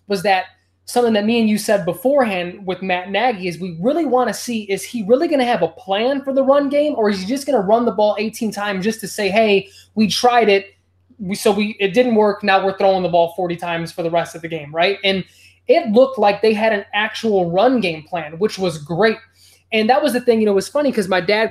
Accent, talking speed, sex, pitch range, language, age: American, 265 wpm, male, 185-230 Hz, English, 20-39